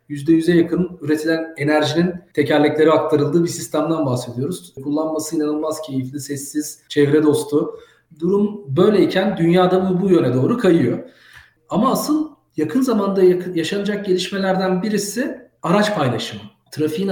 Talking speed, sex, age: 120 wpm, male, 40-59